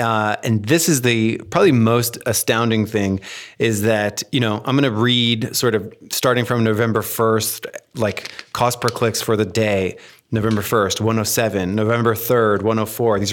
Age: 30-49